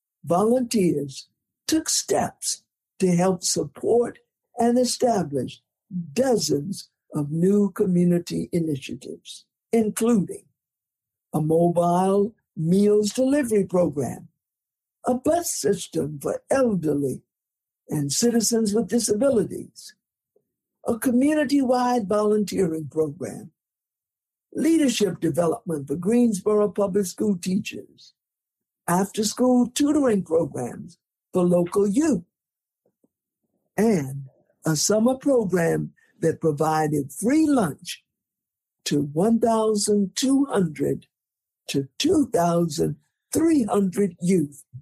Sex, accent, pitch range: male, American, 165-240 Hz